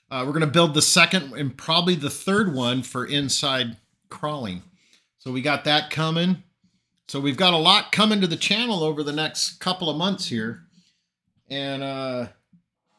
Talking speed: 170 wpm